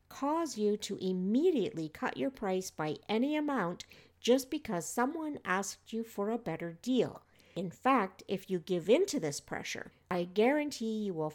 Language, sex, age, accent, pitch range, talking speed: English, female, 60-79, American, 175-250 Hz, 170 wpm